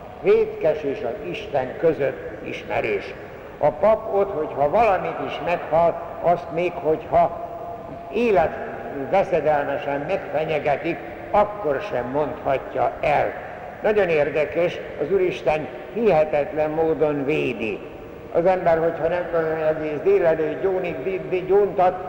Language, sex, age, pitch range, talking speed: Hungarian, male, 60-79, 155-195 Hz, 110 wpm